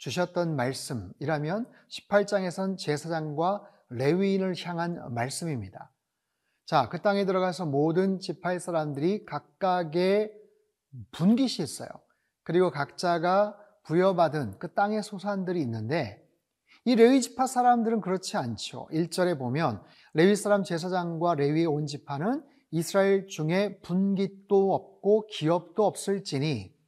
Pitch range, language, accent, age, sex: 165-205 Hz, Korean, native, 30-49, male